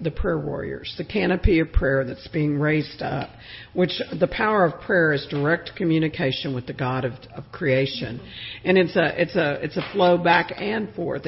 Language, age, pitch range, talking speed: English, 50-69, 155-195 Hz, 190 wpm